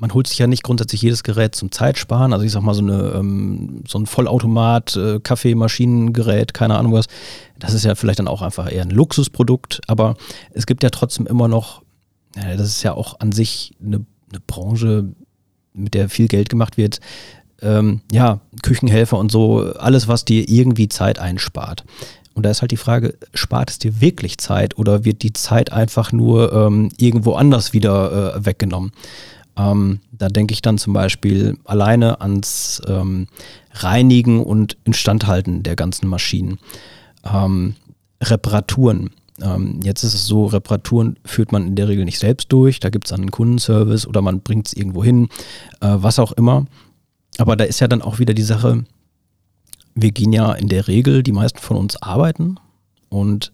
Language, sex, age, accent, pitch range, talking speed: German, male, 40-59, German, 100-115 Hz, 170 wpm